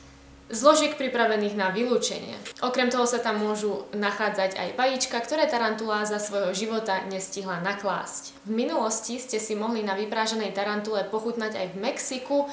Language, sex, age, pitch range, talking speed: Slovak, female, 20-39, 200-240 Hz, 150 wpm